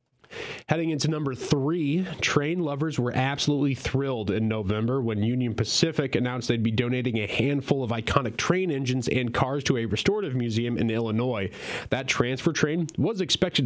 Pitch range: 115-150 Hz